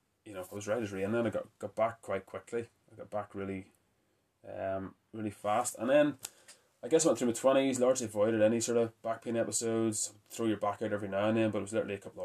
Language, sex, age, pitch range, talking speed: English, male, 20-39, 100-115 Hz, 260 wpm